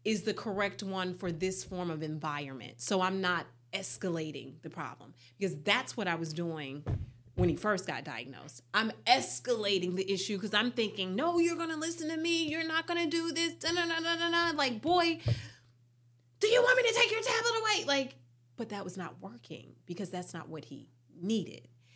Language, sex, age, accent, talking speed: English, female, 30-49, American, 200 wpm